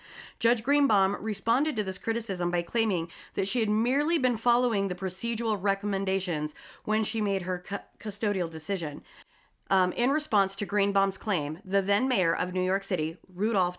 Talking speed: 160 wpm